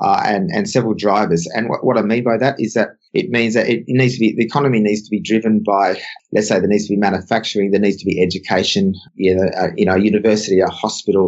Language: English